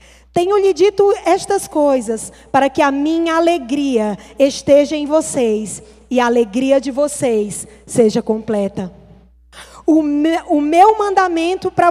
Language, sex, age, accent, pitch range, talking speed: Portuguese, female, 20-39, Brazilian, 215-310 Hz, 125 wpm